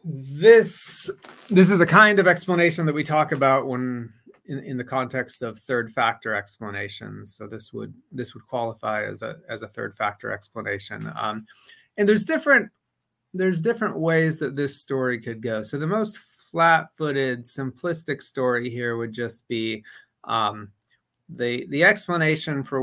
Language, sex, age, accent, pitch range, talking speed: English, male, 30-49, American, 115-150 Hz, 160 wpm